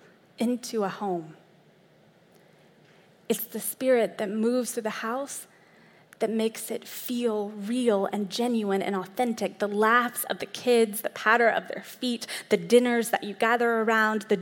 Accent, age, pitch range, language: American, 20-39, 195-235 Hz, English